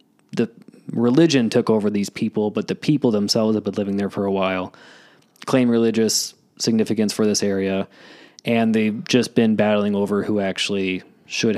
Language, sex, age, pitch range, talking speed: English, male, 20-39, 105-130 Hz, 160 wpm